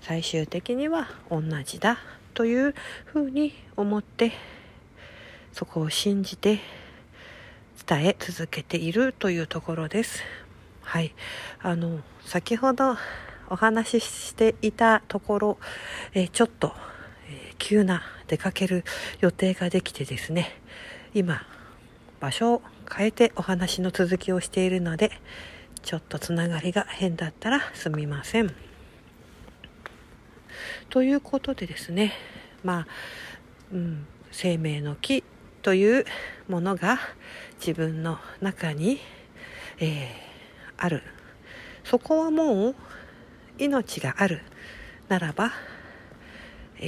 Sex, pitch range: female, 165-235 Hz